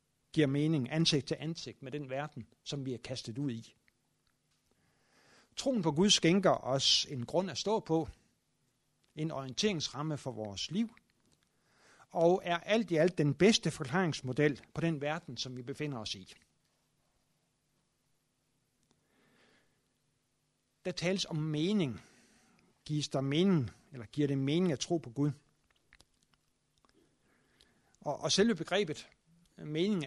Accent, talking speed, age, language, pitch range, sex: native, 125 wpm, 60-79, Danish, 135-175 Hz, male